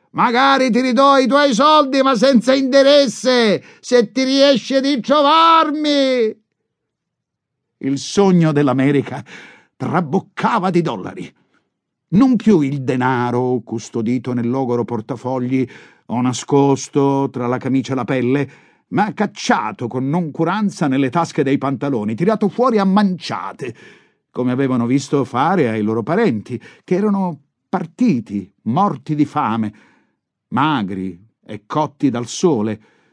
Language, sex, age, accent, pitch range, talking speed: Italian, male, 50-69, native, 125-205 Hz, 120 wpm